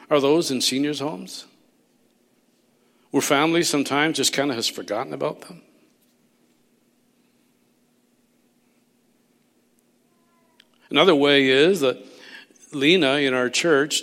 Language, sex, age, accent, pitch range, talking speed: English, male, 50-69, American, 110-130 Hz, 100 wpm